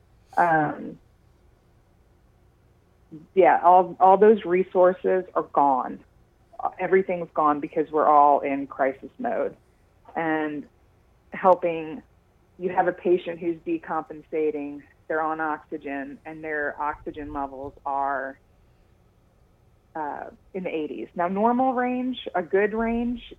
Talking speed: 110 wpm